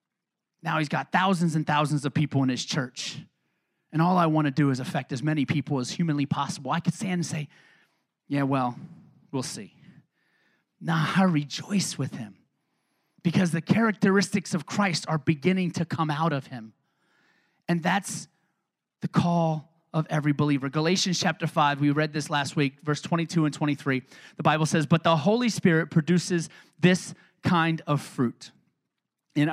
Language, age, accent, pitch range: Italian, 30-49, American, 135-175 Hz